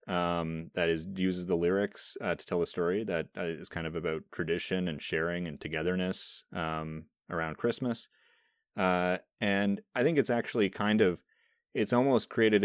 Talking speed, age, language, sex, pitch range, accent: 170 wpm, 30-49, English, male, 85-100 Hz, American